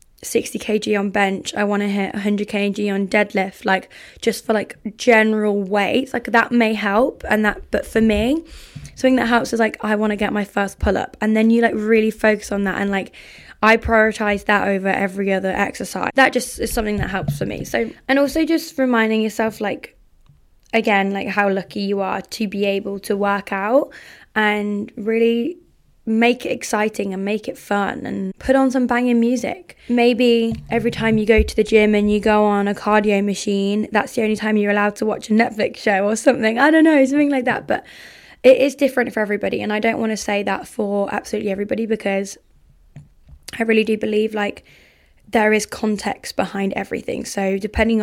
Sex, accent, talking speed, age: female, British, 200 wpm, 10-29